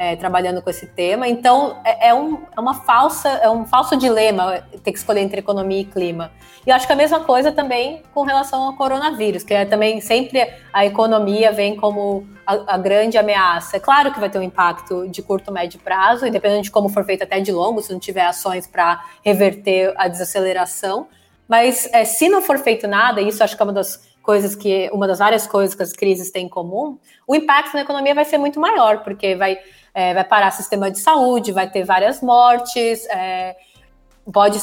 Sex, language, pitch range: female, Portuguese, 195-250 Hz